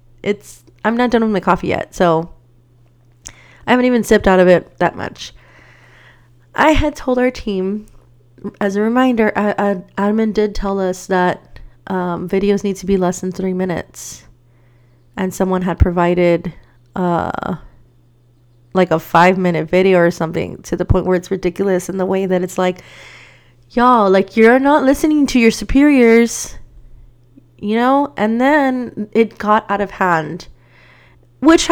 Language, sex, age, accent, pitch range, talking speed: English, female, 30-49, American, 170-210 Hz, 155 wpm